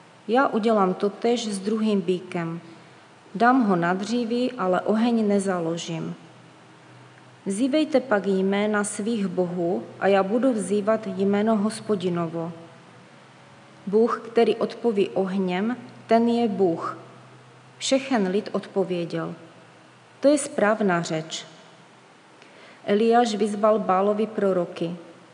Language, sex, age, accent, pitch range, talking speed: Czech, female, 30-49, native, 180-220 Hz, 100 wpm